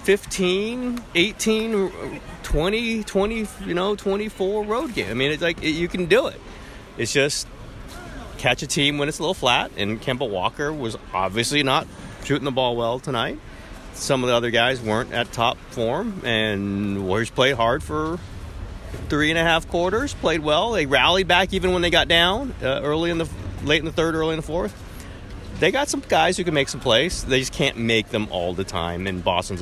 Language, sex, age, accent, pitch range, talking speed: English, male, 30-49, American, 105-160 Hz, 200 wpm